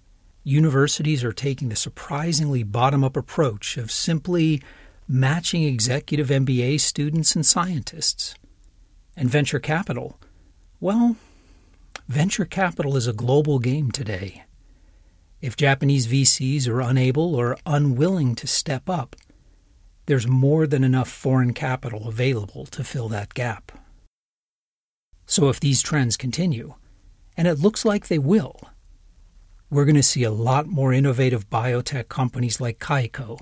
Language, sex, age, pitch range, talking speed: English, male, 40-59, 100-150 Hz, 125 wpm